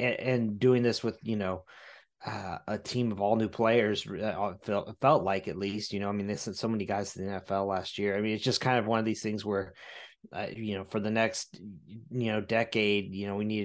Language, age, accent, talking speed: English, 20-39, American, 250 wpm